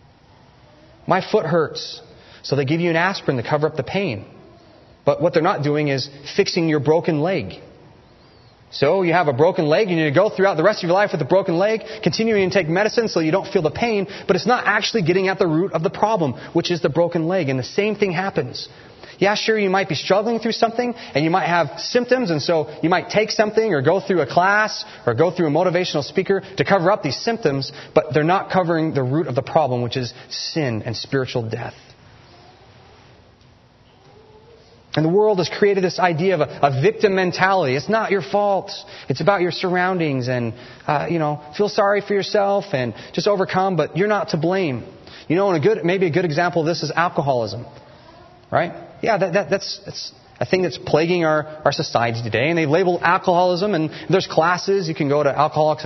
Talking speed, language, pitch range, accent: 215 wpm, English, 150-195 Hz, American